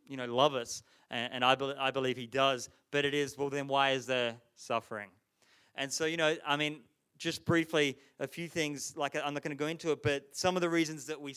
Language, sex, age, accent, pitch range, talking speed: English, male, 20-39, Australian, 135-160 Hz, 240 wpm